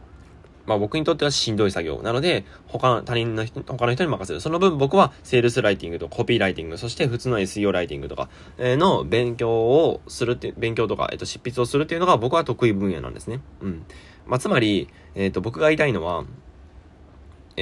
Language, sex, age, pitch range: Japanese, male, 20-39, 95-145 Hz